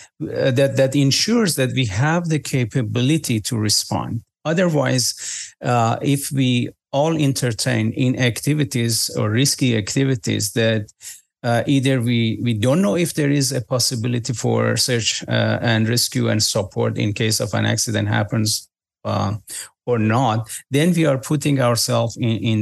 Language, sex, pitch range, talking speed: English, male, 115-140 Hz, 150 wpm